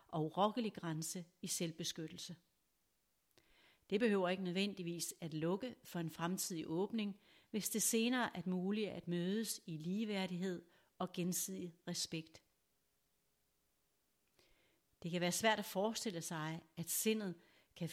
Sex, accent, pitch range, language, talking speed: female, native, 165-200 Hz, Danish, 125 wpm